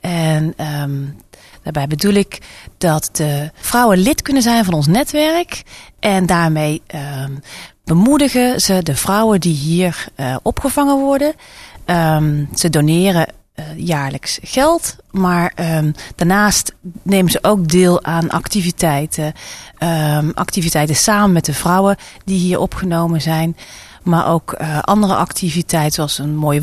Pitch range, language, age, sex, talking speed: 155-195 Hz, Dutch, 30-49, female, 120 wpm